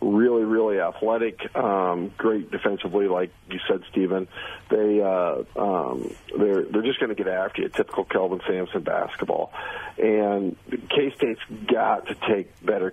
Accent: American